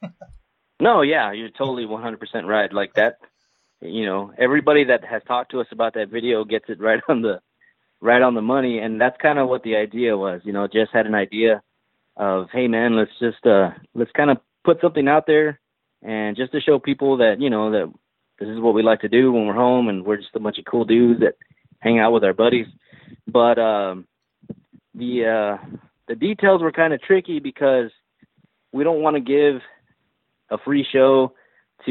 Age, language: 20-39, English